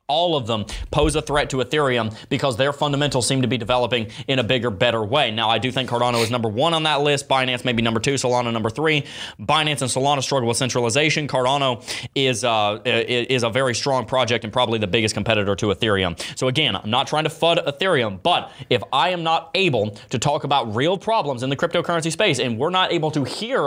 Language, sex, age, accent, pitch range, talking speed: English, male, 30-49, American, 120-155 Hz, 225 wpm